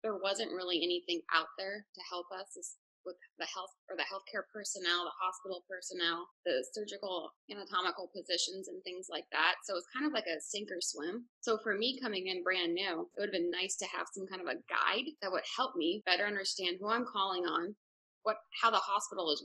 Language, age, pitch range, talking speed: English, 20-39, 180-230 Hz, 220 wpm